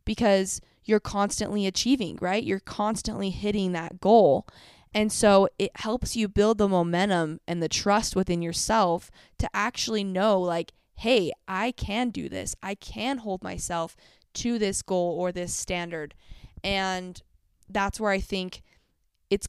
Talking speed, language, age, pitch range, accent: 150 wpm, English, 10-29, 180-225 Hz, American